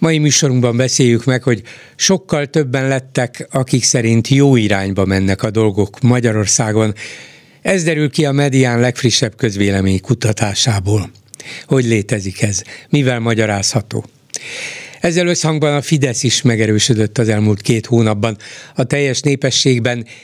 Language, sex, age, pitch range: Hungarian, male, 60-79, 110-145 Hz